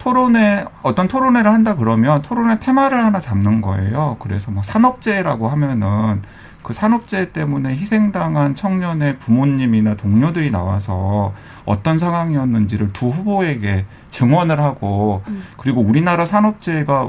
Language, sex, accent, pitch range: Korean, male, native, 110-180 Hz